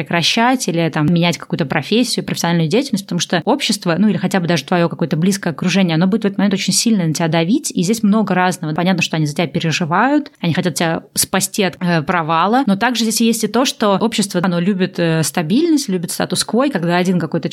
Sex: female